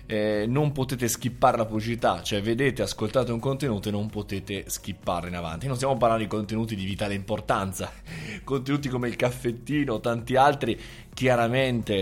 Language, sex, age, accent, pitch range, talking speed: Italian, male, 20-39, native, 105-135 Hz, 165 wpm